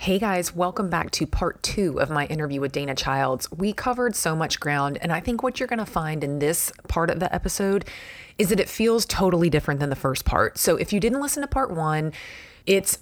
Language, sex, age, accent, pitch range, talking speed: English, female, 30-49, American, 165-220 Hz, 230 wpm